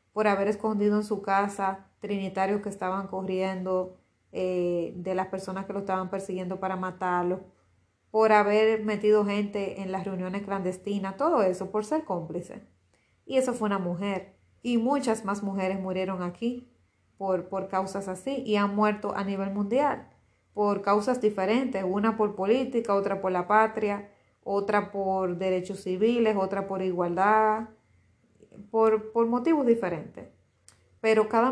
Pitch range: 185-210 Hz